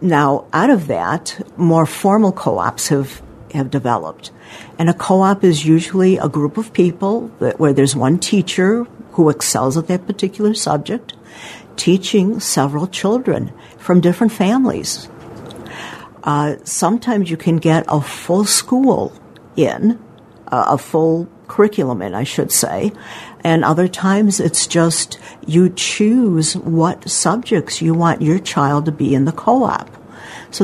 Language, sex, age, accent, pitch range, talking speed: English, female, 60-79, American, 150-190 Hz, 140 wpm